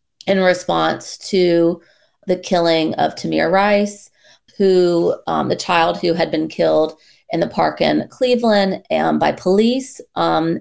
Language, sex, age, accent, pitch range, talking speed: English, female, 30-49, American, 160-195 Hz, 140 wpm